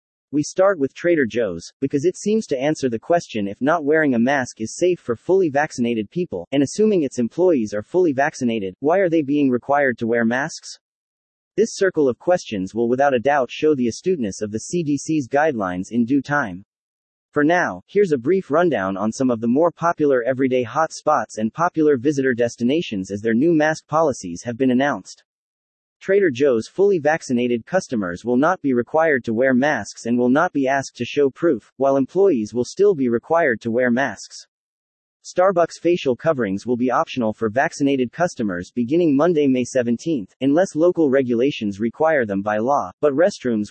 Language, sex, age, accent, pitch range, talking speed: English, male, 30-49, American, 120-165 Hz, 185 wpm